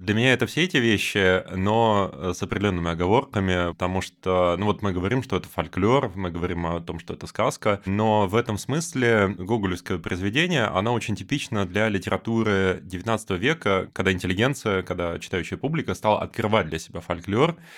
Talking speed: 165 wpm